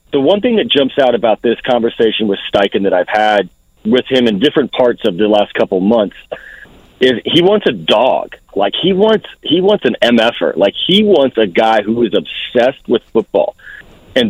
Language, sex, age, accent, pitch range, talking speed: English, male, 40-59, American, 110-150 Hz, 195 wpm